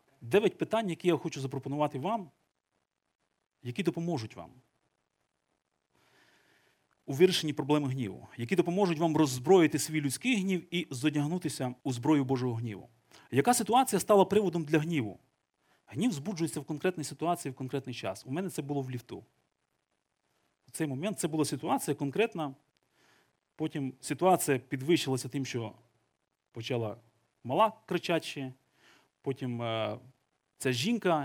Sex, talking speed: male, 125 wpm